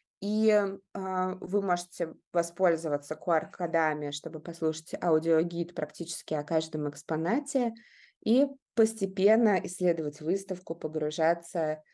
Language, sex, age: Russian, female, 20-39